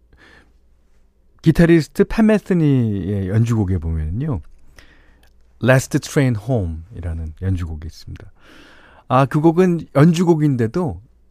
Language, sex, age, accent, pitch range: Korean, male, 40-59, native, 90-150 Hz